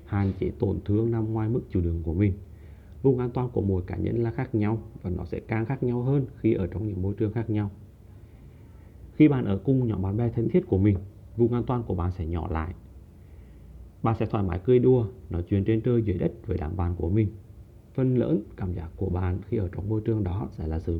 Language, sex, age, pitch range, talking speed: English, male, 30-49, 90-115 Hz, 250 wpm